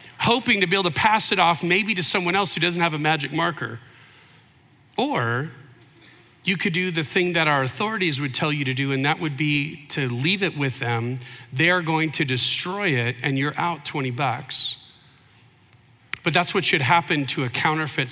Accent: American